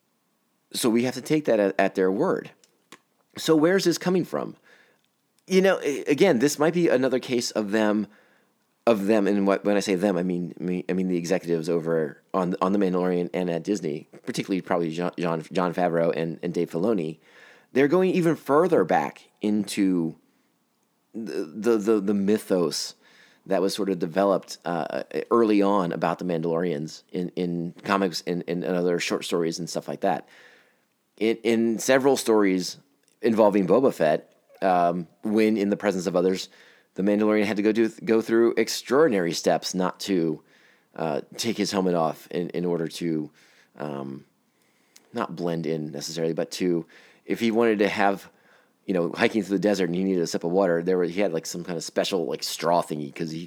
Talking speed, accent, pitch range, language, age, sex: 185 wpm, American, 85-110 Hz, English, 30-49, male